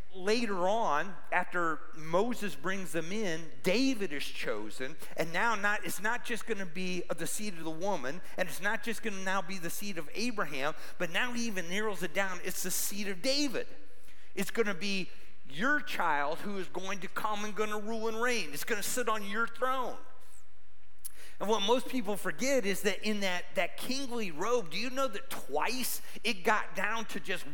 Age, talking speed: 40-59, 205 wpm